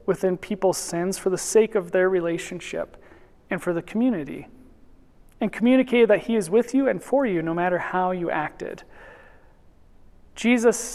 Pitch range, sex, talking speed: 175-220 Hz, male, 160 wpm